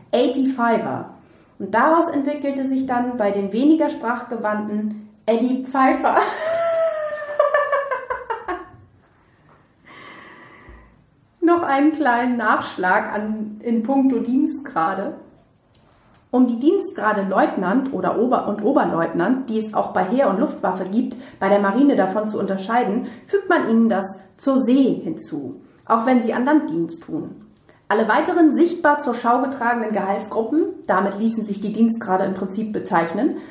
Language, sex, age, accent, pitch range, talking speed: German, female, 30-49, German, 210-290 Hz, 125 wpm